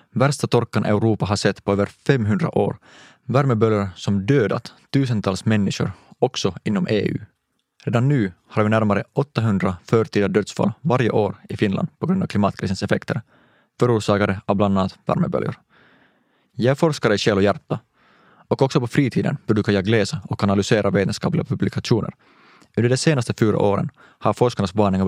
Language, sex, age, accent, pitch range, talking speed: Swedish, male, 20-39, Finnish, 100-125 Hz, 155 wpm